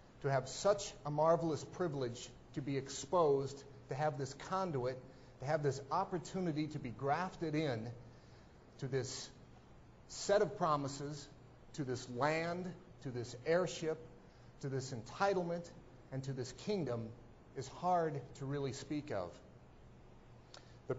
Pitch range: 130-170 Hz